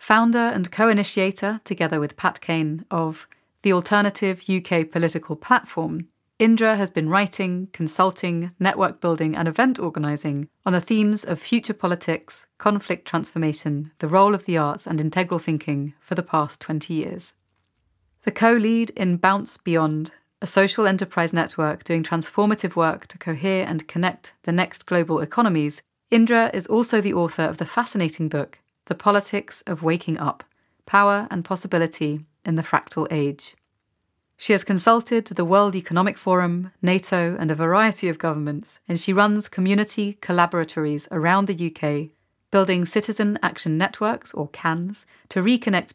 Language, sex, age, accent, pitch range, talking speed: English, female, 30-49, British, 160-200 Hz, 150 wpm